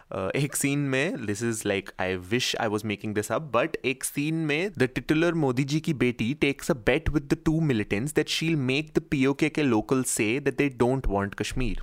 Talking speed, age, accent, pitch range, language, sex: 230 wpm, 20-39, Indian, 105-135 Hz, English, male